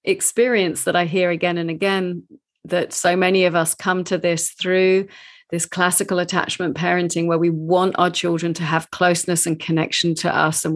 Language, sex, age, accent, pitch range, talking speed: English, female, 40-59, British, 165-190 Hz, 185 wpm